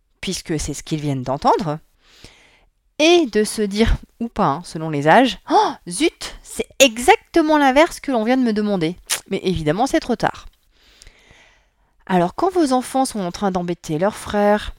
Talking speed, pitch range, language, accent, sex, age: 170 wpm, 185-265 Hz, French, French, female, 30-49